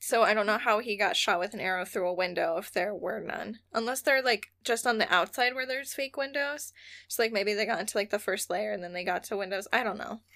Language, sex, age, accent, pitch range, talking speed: English, female, 10-29, American, 195-235 Hz, 280 wpm